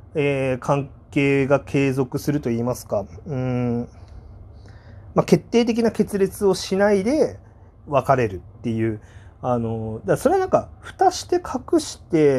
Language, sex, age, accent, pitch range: Japanese, male, 40-59, native, 110-160 Hz